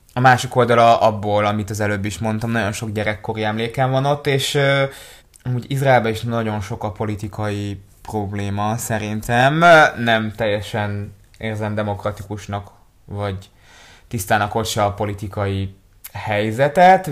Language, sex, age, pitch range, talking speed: Hungarian, male, 20-39, 105-130 Hz, 130 wpm